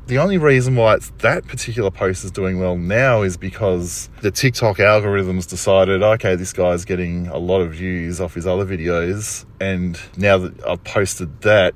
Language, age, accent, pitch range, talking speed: English, 30-49, Australian, 95-120 Hz, 185 wpm